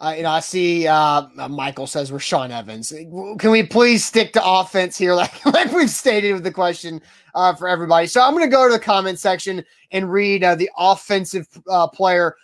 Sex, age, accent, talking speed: male, 20-39, American, 210 wpm